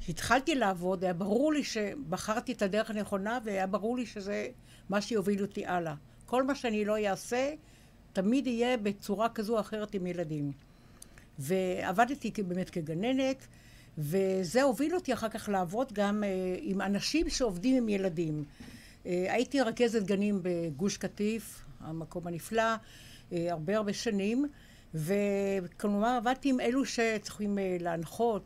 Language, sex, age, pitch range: Hebrew, female, 60-79, 175-225 Hz